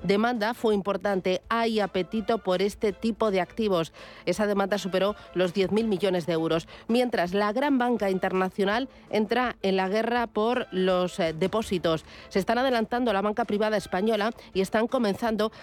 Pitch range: 185-220 Hz